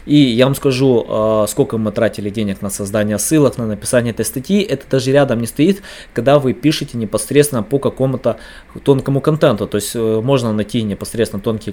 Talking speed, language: 175 wpm, Russian